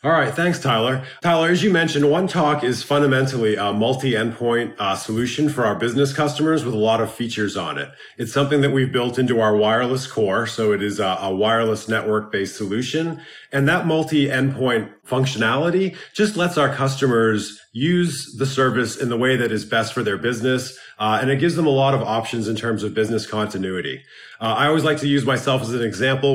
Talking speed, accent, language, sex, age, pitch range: 200 wpm, American, English, male, 30-49, 115-145 Hz